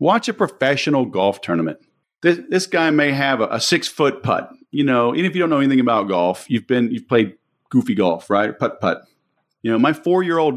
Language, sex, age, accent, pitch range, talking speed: English, male, 40-59, American, 110-145 Hz, 210 wpm